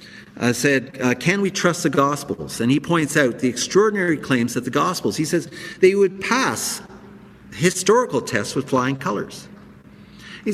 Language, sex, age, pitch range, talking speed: English, male, 50-69, 120-180 Hz, 165 wpm